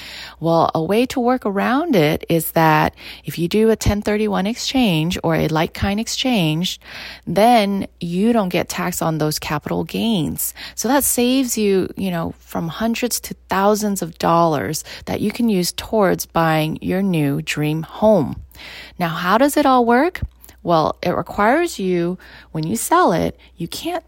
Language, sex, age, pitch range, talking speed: English, female, 30-49, 160-230 Hz, 165 wpm